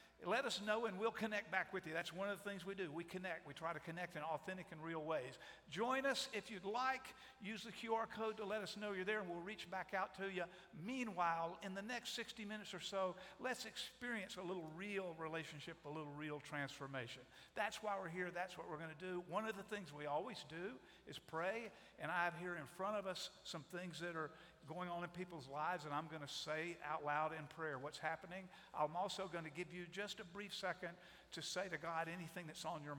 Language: English